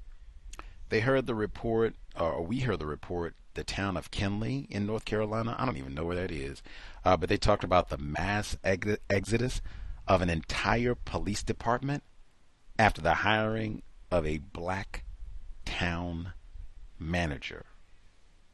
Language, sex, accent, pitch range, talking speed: English, male, American, 80-110 Hz, 140 wpm